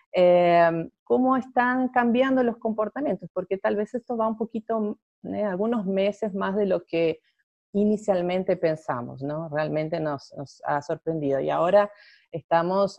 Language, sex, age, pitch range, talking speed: Spanish, female, 30-49, 165-205 Hz, 145 wpm